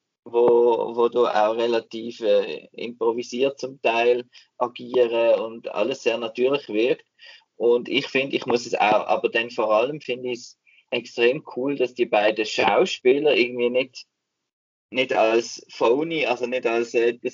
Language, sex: German, male